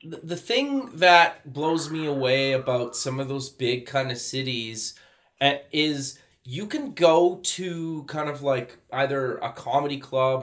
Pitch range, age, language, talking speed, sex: 135-170 Hz, 30-49, English, 150 wpm, male